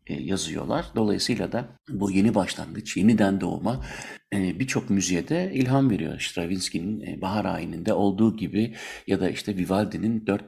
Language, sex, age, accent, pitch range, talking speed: Turkish, male, 60-79, native, 95-125 Hz, 125 wpm